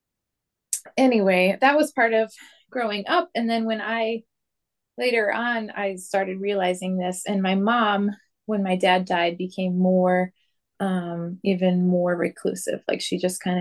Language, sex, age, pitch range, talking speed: English, female, 20-39, 185-230 Hz, 150 wpm